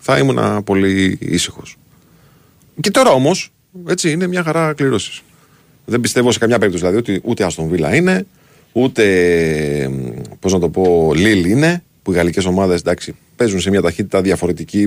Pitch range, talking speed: 95-140 Hz, 160 wpm